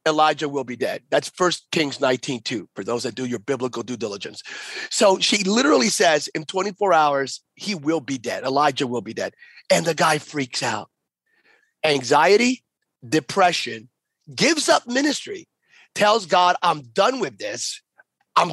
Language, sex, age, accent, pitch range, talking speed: English, male, 30-49, American, 140-190 Hz, 160 wpm